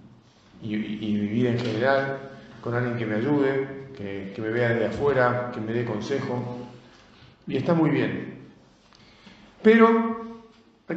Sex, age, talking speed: male, 40-59, 150 wpm